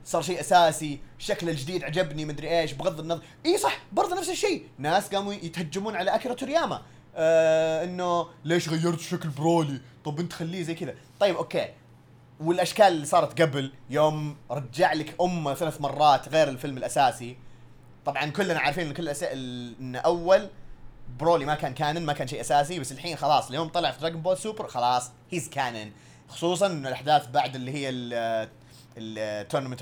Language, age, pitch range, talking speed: Arabic, 20-39, 145-190 Hz, 165 wpm